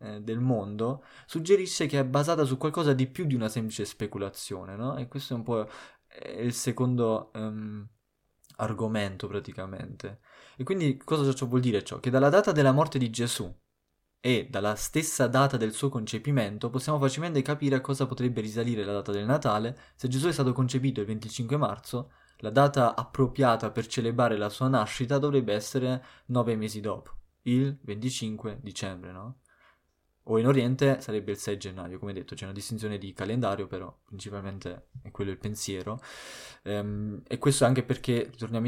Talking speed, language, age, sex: 170 wpm, Italian, 20-39, male